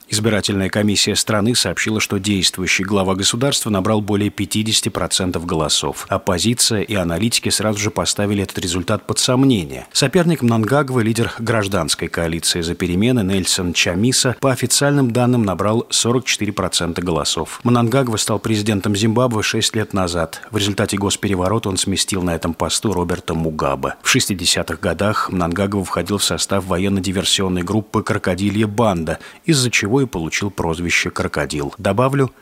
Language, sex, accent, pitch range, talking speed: Russian, male, native, 90-115 Hz, 135 wpm